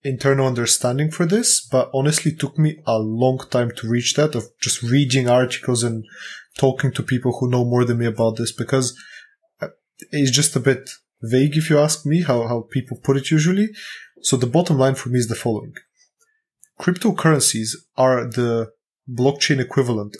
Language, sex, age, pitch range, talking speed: English, male, 20-39, 120-145 Hz, 175 wpm